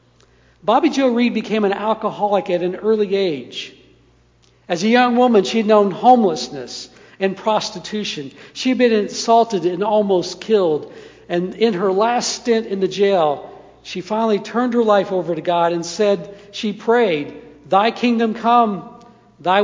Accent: American